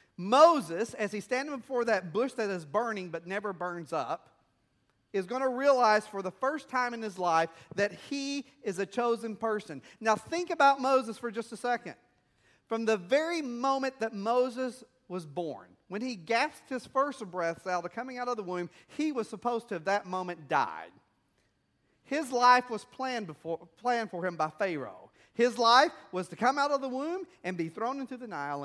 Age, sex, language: 40-59, male, English